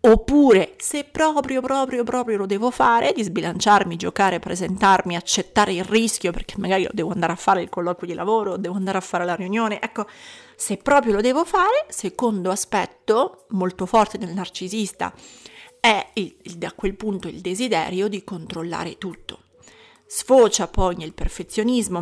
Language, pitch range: Italian, 185-240 Hz